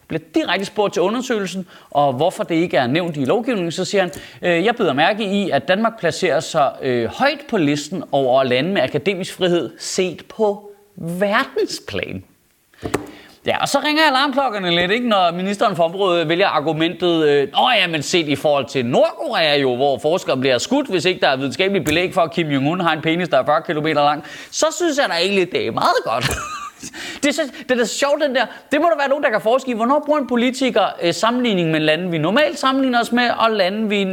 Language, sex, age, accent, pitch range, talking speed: Danish, male, 30-49, native, 165-240 Hz, 220 wpm